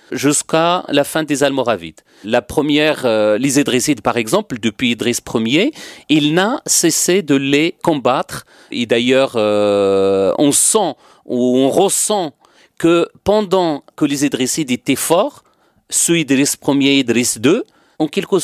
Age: 40-59